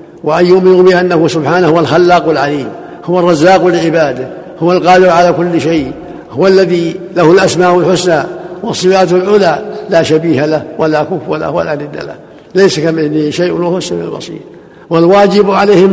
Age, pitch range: 60-79, 155-190 Hz